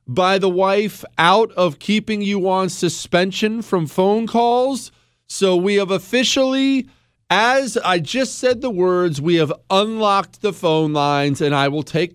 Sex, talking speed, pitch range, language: male, 160 wpm, 140-200 Hz, English